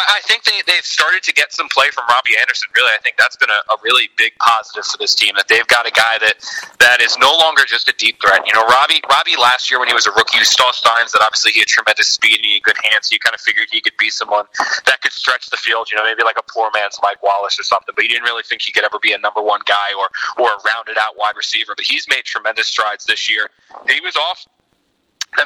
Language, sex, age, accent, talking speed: English, male, 20-39, American, 285 wpm